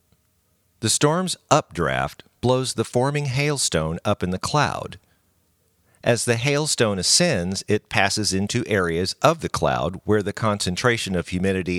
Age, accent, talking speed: 50-69, American, 135 wpm